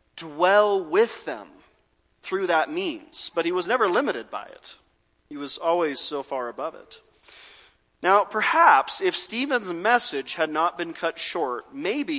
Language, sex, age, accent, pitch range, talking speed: English, male, 30-49, American, 150-215 Hz, 155 wpm